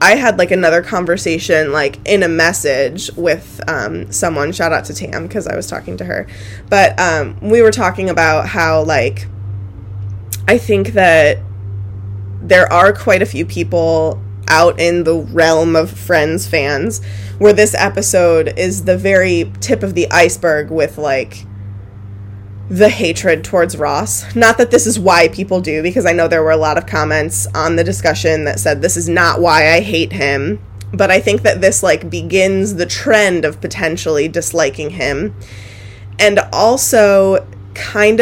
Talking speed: 165 wpm